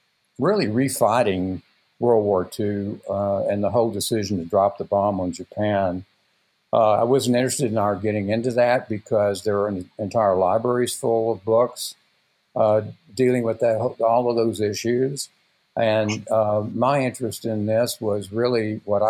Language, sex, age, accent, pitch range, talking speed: English, male, 60-79, American, 100-115 Hz, 155 wpm